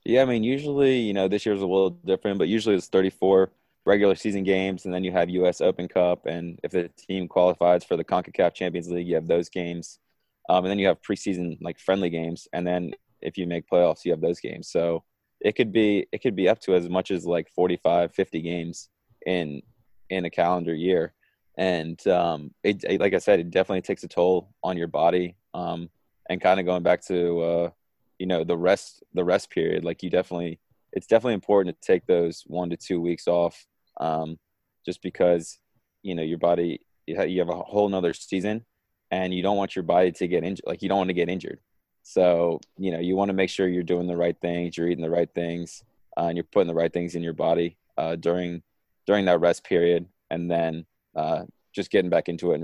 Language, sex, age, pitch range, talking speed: English, male, 20-39, 85-95 Hz, 220 wpm